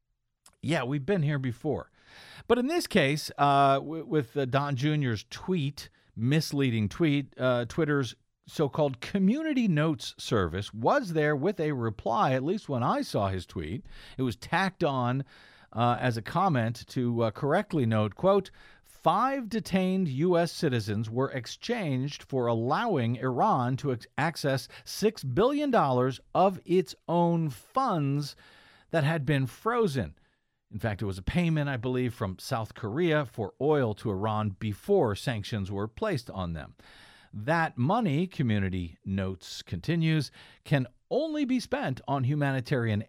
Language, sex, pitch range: English, male, 120-165 Hz